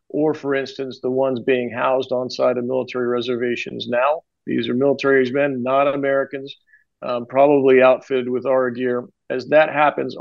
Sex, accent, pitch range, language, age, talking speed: male, American, 125-140 Hz, English, 50-69, 165 wpm